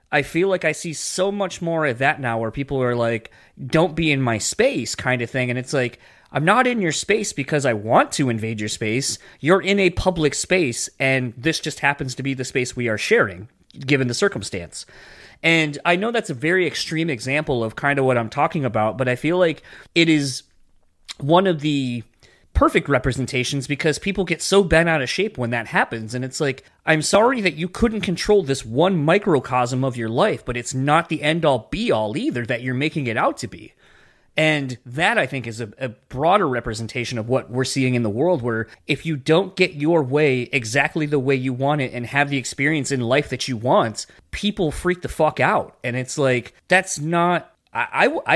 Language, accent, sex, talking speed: English, American, male, 215 wpm